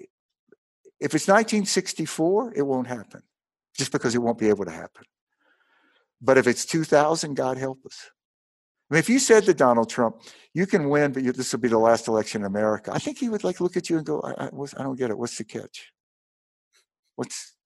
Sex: male